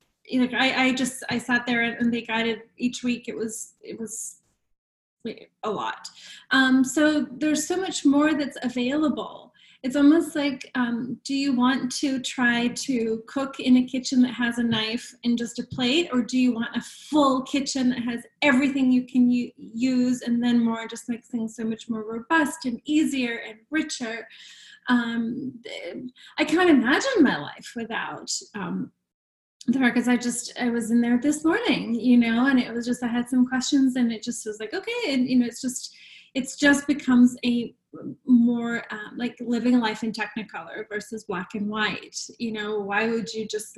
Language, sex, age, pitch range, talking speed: English, female, 30-49, 225-260 Hz, 190 wpm